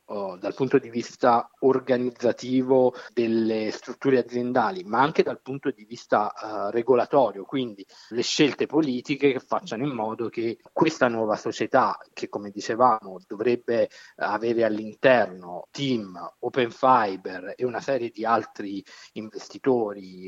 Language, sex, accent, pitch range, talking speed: Italian, male, native, 110-130 Hz, 125 wpm